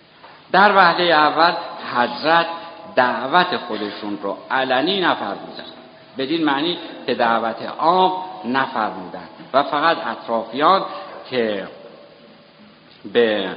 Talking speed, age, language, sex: 90 wpm, 60-79, Persian, male